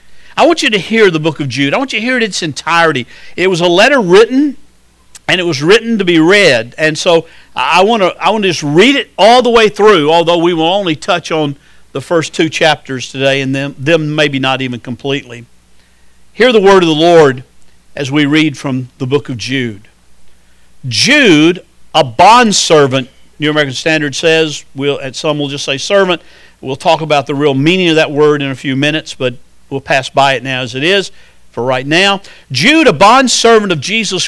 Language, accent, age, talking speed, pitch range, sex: English, American, 50-69, 210 wpm, 135-205 Hz, male